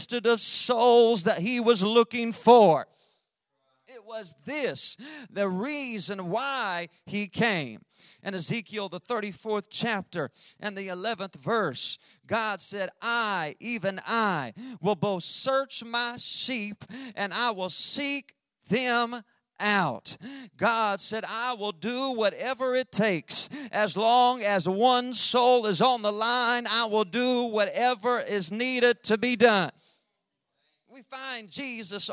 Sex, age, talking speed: male, 40-59, 130 wpm